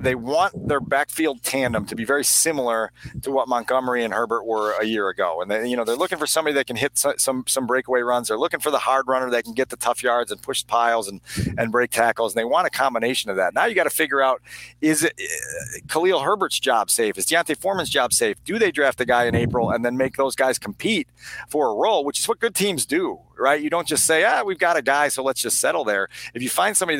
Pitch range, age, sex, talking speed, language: 130-170 Hz, 40-59, male, 265 wpm, English